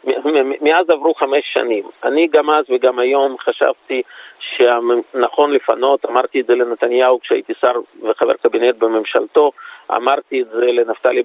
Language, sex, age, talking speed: Hebrew, male, 40-59, 140 wpm